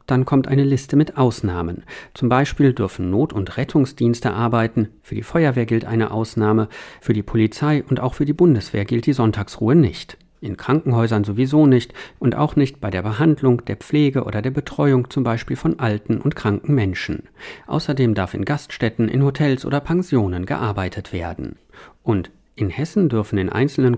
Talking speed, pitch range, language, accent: 175 wpm, 110-140 Hz, German, German